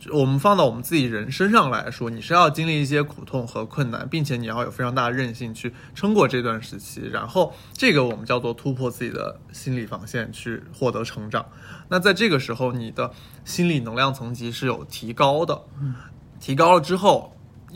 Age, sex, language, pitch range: 20-39, male, Chinese, 120-145 Hz